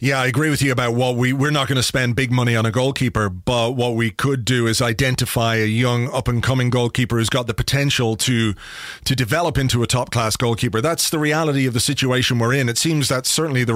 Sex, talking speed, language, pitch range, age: male, 240 wpm, English, 120-140 Hz, 30-49